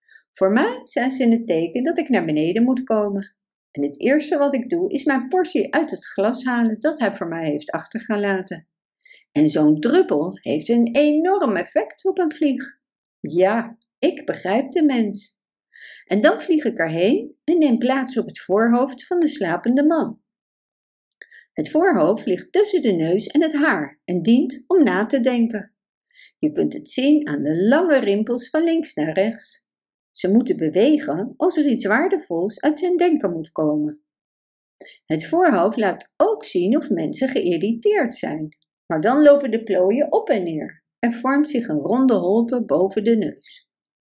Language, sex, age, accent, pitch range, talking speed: Dutch, female, 60-79, Dutch, 200-305 Hz, 175 wpm